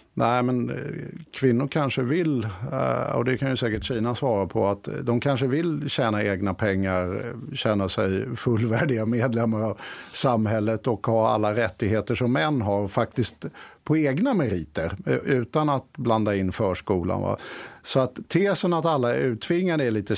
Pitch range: 115-165 Hz